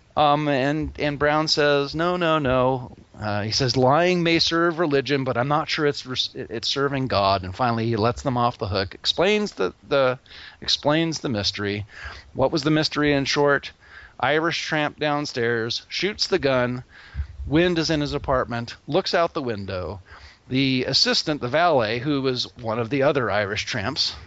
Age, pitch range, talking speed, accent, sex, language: 40-59, 115-150 Hz, 175 wpm, American, male, English